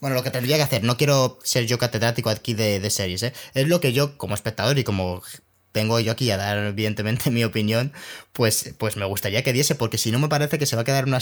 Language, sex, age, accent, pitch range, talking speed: Spanish, male, 20-39, Spanish, 110-145 Hz, 260 wpm